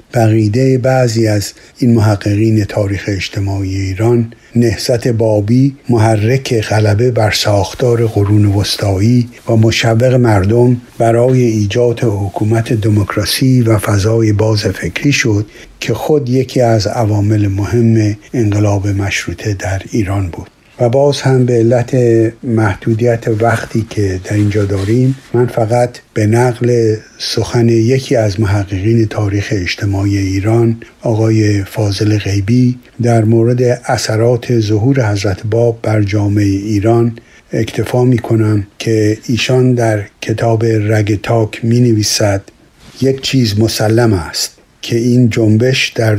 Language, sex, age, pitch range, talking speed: Persian, male, 60-79, 105-120 Hz, 120 wpm